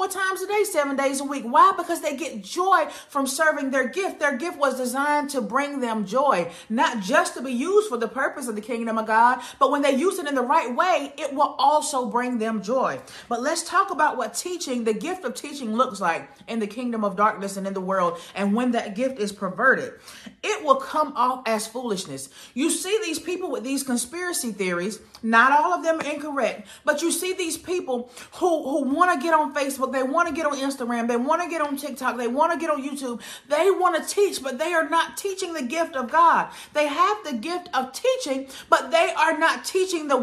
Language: English